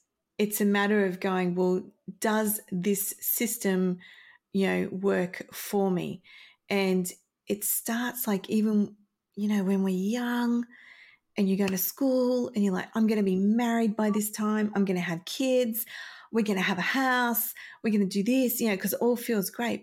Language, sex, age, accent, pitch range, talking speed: English, female, 30-49, Australian, 190-225 Hz, 190 wpm